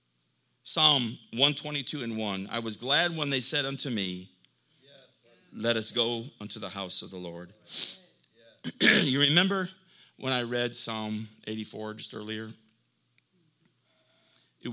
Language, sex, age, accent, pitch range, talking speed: English, male, 50-69, American, 95-120 Hz, 125 wpm